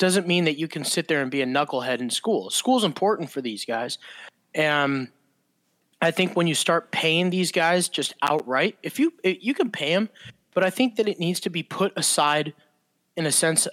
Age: 20-39